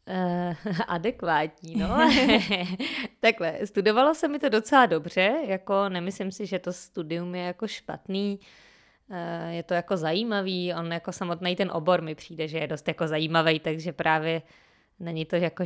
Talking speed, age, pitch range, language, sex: 155 wpm, 20-39, 175-200 Hz, Czech, female